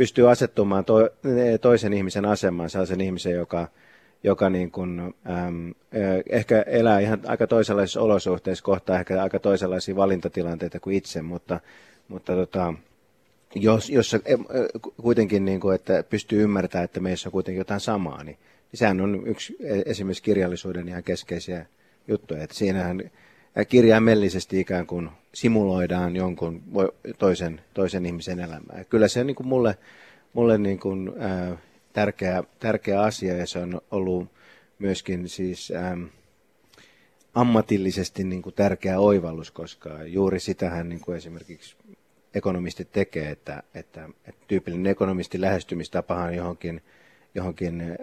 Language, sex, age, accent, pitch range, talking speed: Finnish, male, 30-49, native, 90-100 Hz, 130 wpm